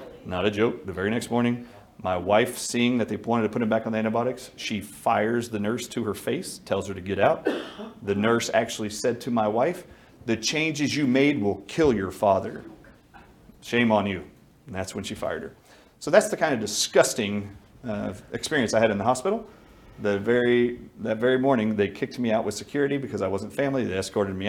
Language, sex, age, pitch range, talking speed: English, male, 40-59, 100-120 Hz, 215 wpm